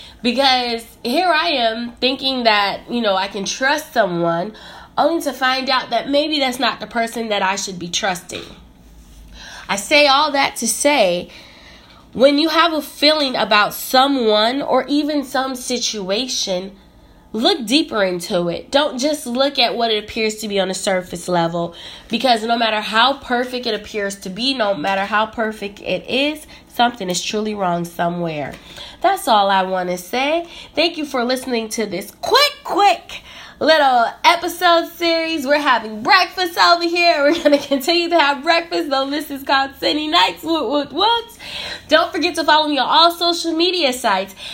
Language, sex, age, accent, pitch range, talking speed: English, female, 20-39, American, 215-310 Hz, 170 wpm